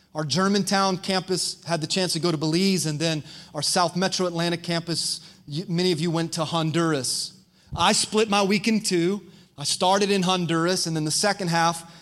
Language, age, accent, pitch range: English, 30-49, American, 160-190 Hz